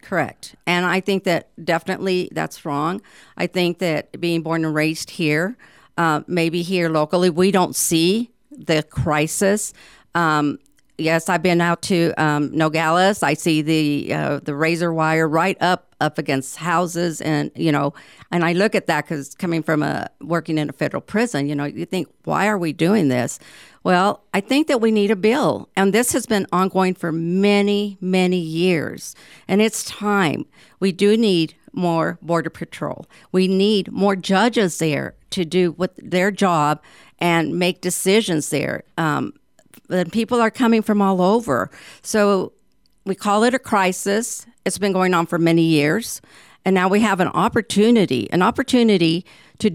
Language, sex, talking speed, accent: English, female, 170 wpm, American